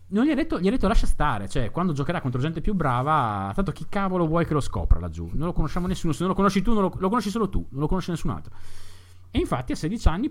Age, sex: 30-49, male